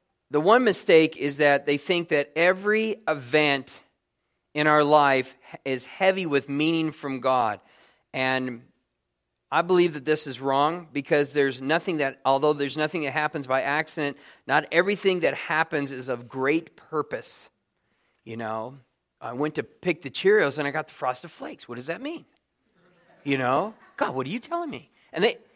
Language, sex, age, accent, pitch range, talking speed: English, male, 40-59, American, 140-180 Hz, 170 wpm